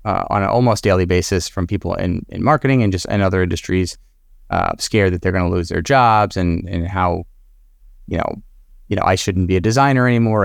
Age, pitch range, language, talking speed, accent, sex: 30-49, 90-105 Hz, English, 220 wpm, American, male